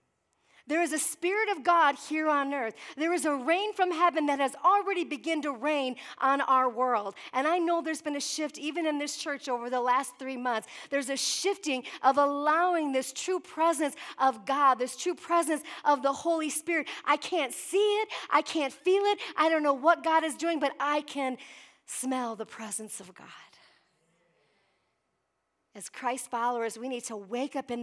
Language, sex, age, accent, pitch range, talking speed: English, female, 40-59, American, 245-305 Hz, 190 wpm